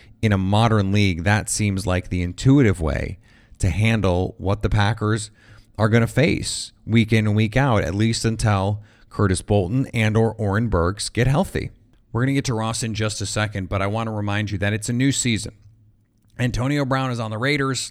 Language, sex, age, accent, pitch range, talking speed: English, male, 30-49, American, 100-125 Hz, 210 wpm